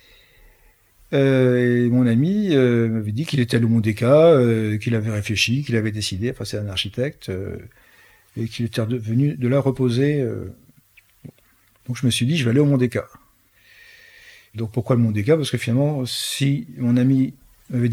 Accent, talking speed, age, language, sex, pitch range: French, 170 wpm, 50-69, French, male, 110-135 Hz